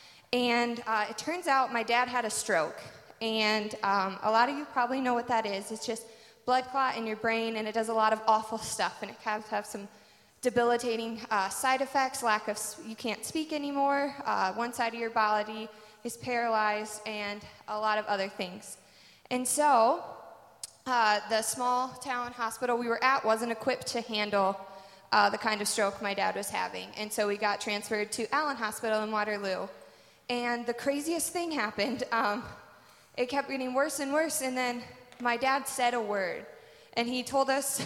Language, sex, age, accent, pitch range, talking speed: English, female, 20-39, American, 210-250 Hz, 190 wpm